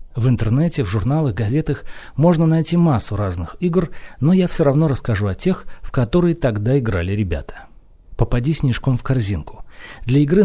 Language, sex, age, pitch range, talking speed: Russian, male, 40-59, 105-155 Hz, 160 wpm